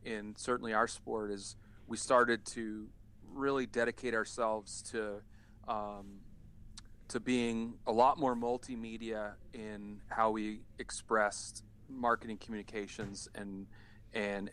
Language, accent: English, American